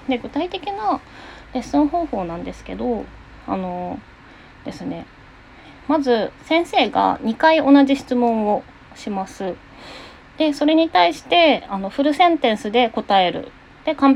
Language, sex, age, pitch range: Japanese, female, 20-39, 195-300 Hz